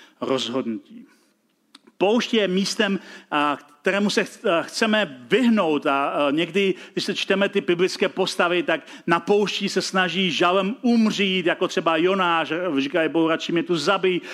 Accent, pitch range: native, 165-215 Hz